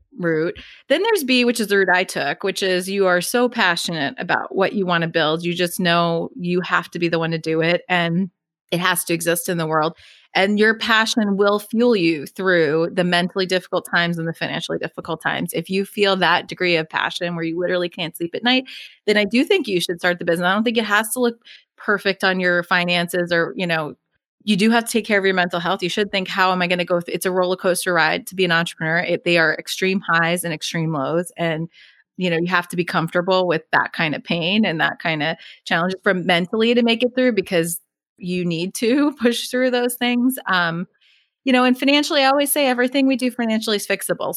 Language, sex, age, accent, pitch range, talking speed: English, female, 30-49, American, 175-225 Hz, 240 wpm